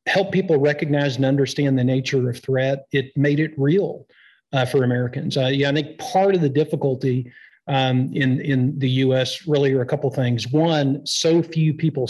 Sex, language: male, English